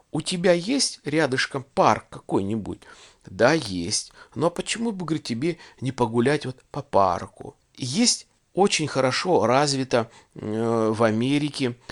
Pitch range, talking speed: 110-140 Hz, 120 wpm